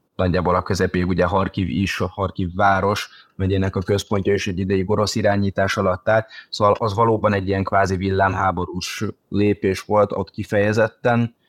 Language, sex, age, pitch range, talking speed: Hungarian, male, 30-49, 90-105 Hz, 150 wpm